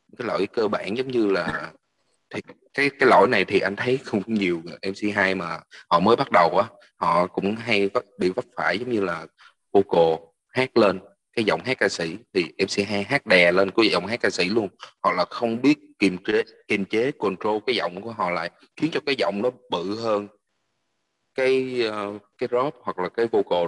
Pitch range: 90-105 Hz